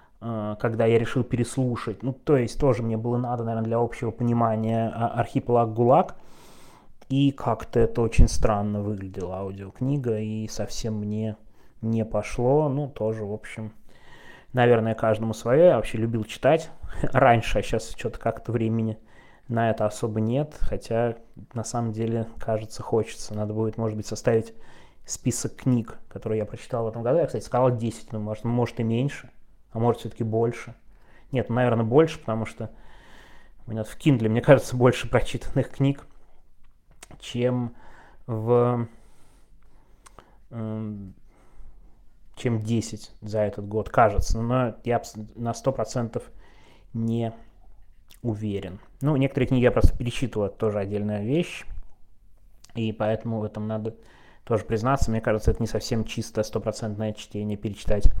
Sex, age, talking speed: male, 20-39, 140 wpm